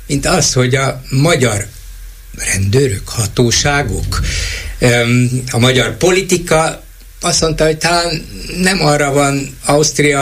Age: 60-79